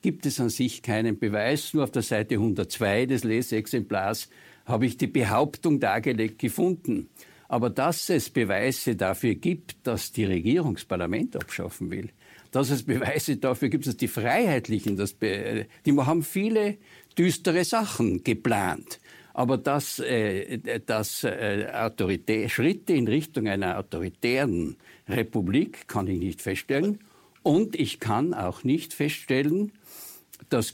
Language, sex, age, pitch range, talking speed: German, male, 60-79, 115-160 Hz, 135 wpm